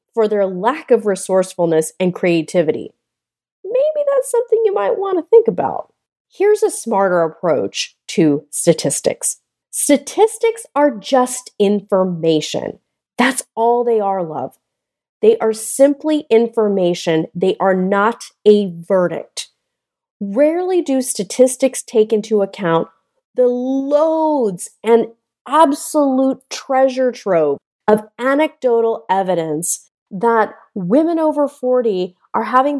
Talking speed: 110 wpm